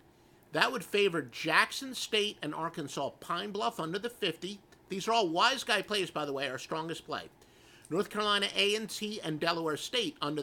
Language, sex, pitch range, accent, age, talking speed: English, male, 150-210 Hz, American, 50-69, 180 wpm